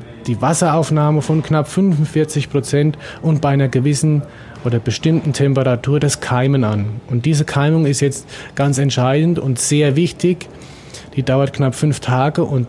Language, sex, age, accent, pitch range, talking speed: German, male, 30-49, German, 130-155 Hz, 150 wpm